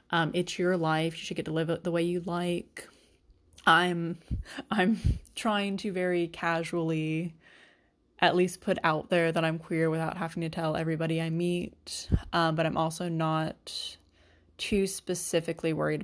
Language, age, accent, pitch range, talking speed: English, 20-39, American, 155-175 Hz, 160 wpm